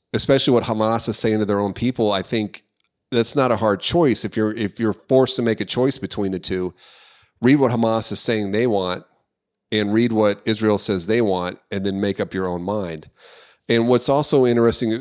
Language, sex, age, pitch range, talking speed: English, male, 40-59, 100-115 Hz, 210 wpm